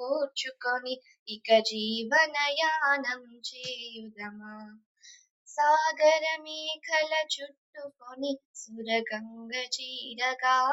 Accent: native